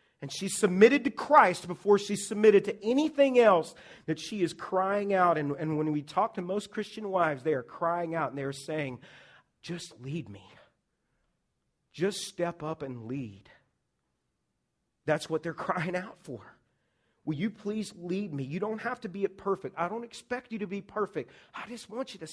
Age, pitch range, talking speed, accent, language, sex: 40-59, 155-205 Hz, 185 wpm, American, English, male